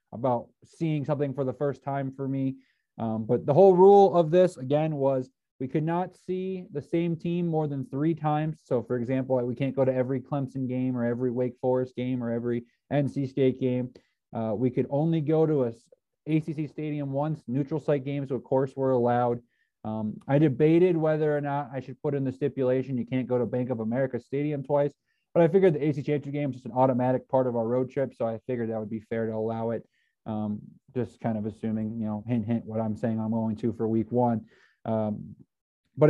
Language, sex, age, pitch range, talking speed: English, male, 20-39, 120-145 Hz, 220 wpm